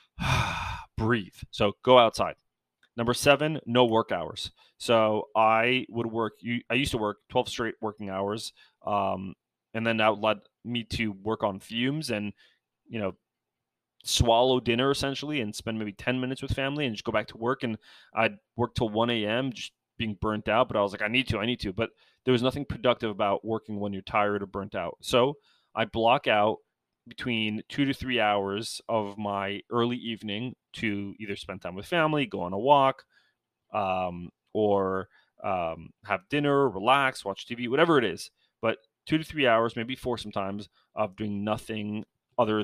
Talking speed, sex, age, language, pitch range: 180 wpm, male, 20-39, English, 100-125 Hz